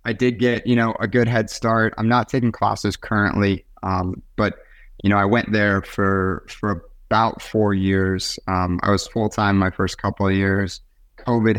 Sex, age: male, 20-39